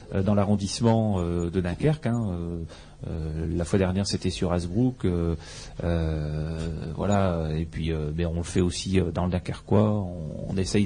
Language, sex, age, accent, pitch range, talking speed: French, male, 40-59, French, 95-120 Hz, 170 wpm